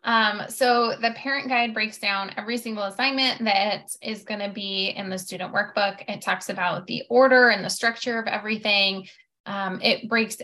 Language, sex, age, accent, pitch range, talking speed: English, female, 10-29, American, 190-230 Hz, 185 wpm